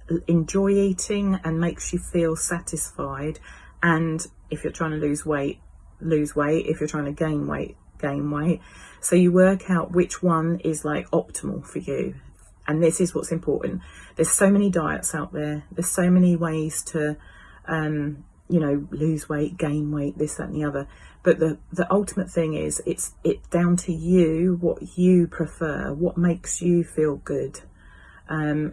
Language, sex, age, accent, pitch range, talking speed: English, female, 30-49, British, 150-180 Hz, 175 wpm